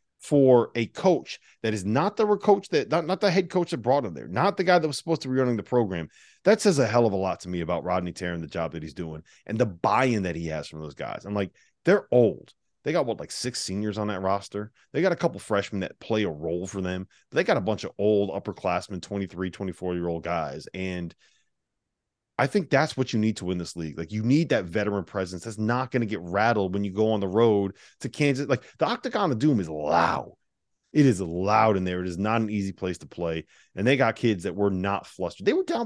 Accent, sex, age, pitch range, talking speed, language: American, male, 30-49, 90-140 Hz, 255 wpm, English